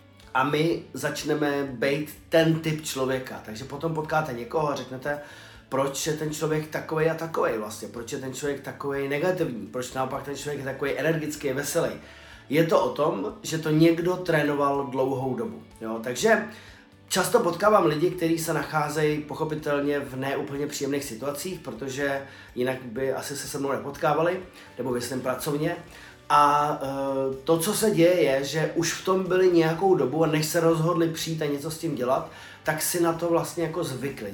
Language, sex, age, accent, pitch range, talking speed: Czech, male, 30-49, native, 135-165 Hz, 175 wpm